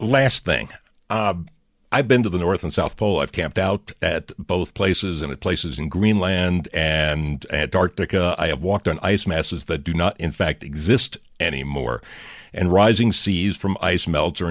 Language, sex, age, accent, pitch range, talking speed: English, male, 60-79, American, 85-110 Hz, 180 wpm